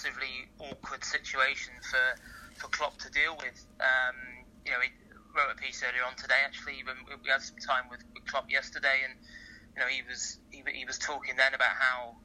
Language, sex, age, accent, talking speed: English, male, 30-49, British, 195 wpm